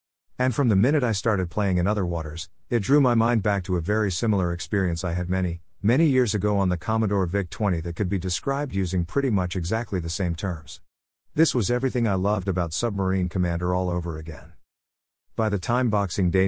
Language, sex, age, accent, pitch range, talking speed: English, male, 50-69, American, 90-110 Hz, 210 wpm